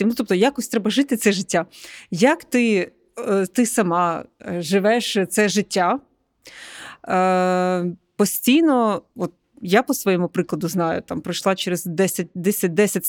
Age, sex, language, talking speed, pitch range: 30-49, female, Ukrainian, 120 wpm, 180-220 Hz